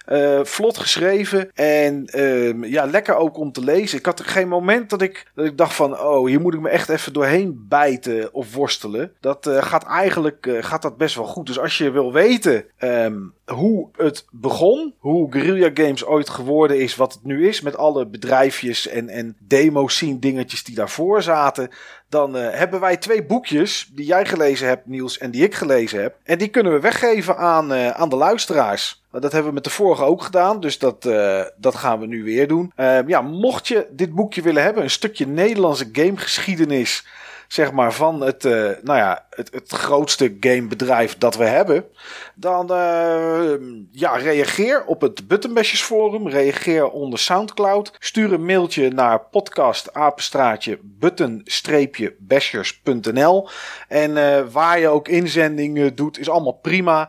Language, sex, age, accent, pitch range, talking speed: Dutch, male, 40-59, Dutch, 130-180 Hz, 175 wpm